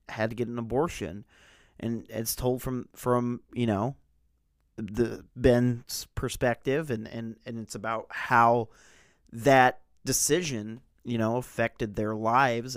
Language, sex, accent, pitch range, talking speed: English, male, American, 110-135 Hz, 130 wpm